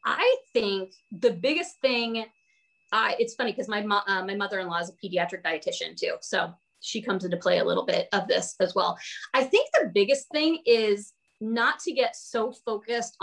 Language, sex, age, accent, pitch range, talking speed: English, female, 30-49, American, 195-260 Hz, 180 wpm